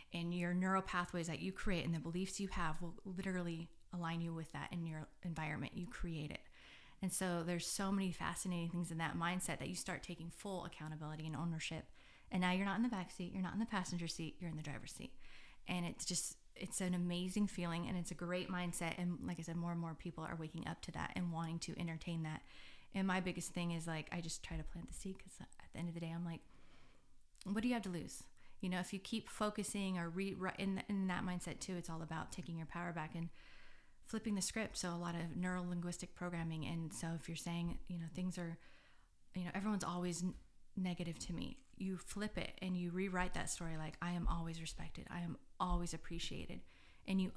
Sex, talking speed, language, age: female, 230 wpm, English, 20-39